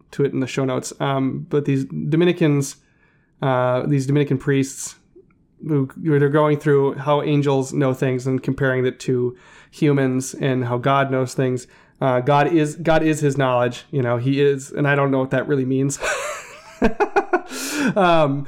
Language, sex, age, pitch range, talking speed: English, male, 30-49, 135-155 Hz, 170 wpm